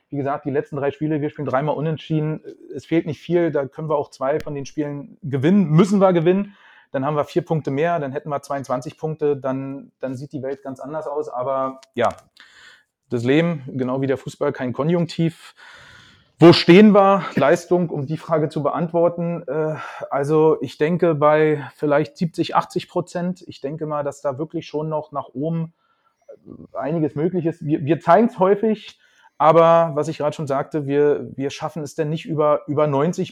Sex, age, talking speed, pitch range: male, 30-49, 185 wpm, 135-170 Hz